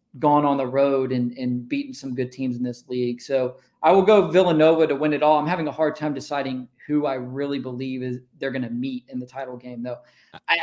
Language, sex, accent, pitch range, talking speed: English, male, American, 130-150 Hz, 245 wpm